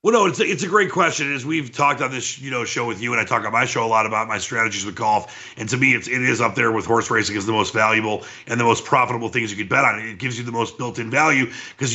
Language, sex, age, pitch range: English, male, 30-49, 125-170 Hz